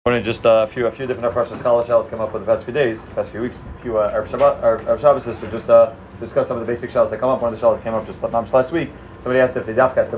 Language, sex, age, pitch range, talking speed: English, male, 30-49, 115-155 Hz, 315 wpm